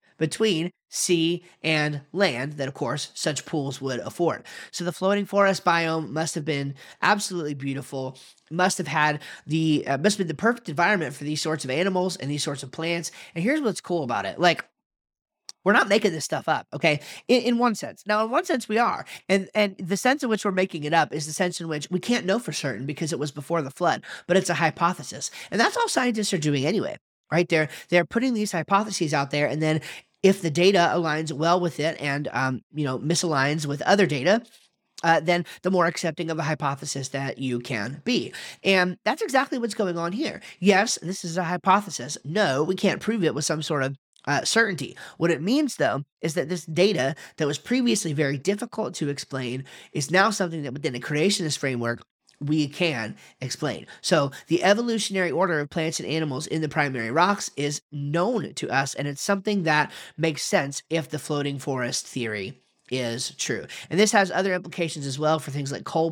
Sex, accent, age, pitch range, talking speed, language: male, American, 30-49, 145-190 Hz, 210 wpm, English